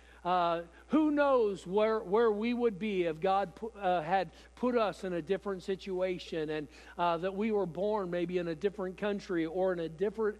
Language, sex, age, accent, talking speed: English, male, 50-69, American, 185 wpm